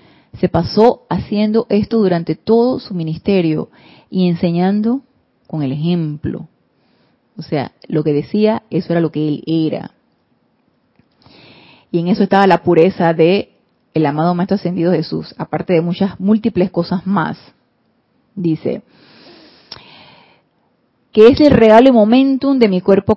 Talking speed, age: 130 wpm, 30-49